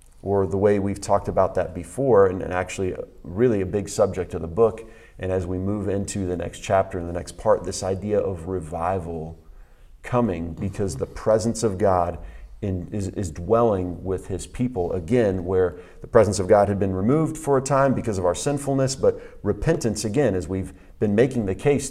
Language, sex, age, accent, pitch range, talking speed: English, male, 40-59, American, 90-115 Hz, 195 wpm